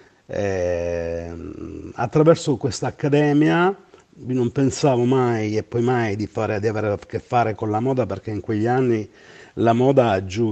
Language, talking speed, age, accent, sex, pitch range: Italian, 155 wpm, 50-69, native, male, 105-135 Hz